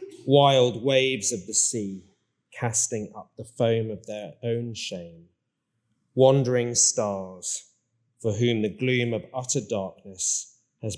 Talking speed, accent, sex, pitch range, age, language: 125 wpm, British, male, 110-140 Hz, 30-49, English